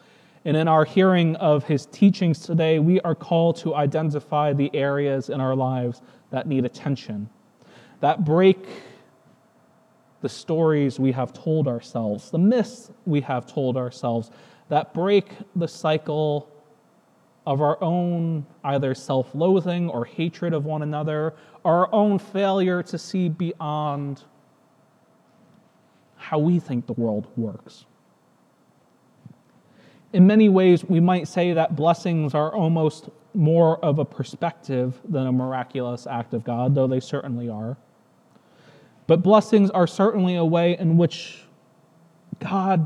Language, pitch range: English, 135-175 Hz